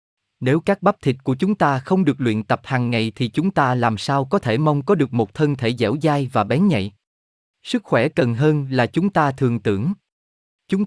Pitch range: 110-160 Hz